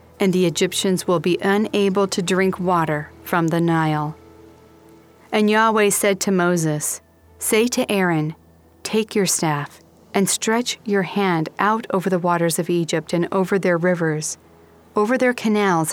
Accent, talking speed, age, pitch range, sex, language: American, 150 wpm, 40-59, 165-205 Hz, female, English